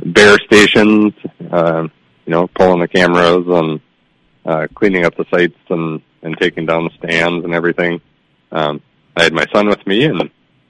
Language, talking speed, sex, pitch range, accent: English, 170 wpm, male, 80-100 Hz, American